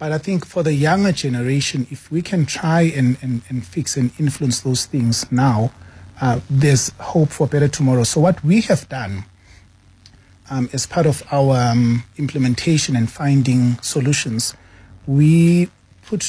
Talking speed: 155 wpm